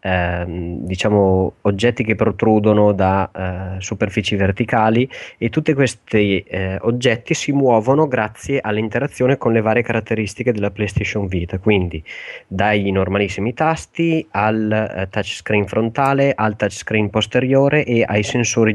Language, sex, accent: Italian, male, native